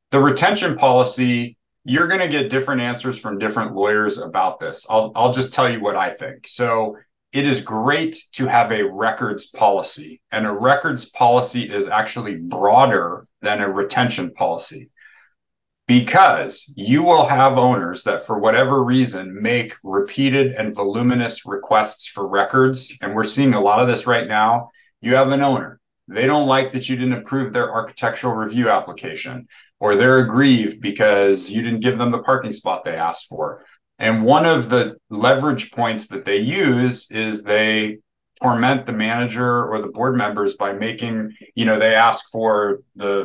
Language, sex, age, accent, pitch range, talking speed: English, male, 40-59, American, 105-130 Hz, 170 wpm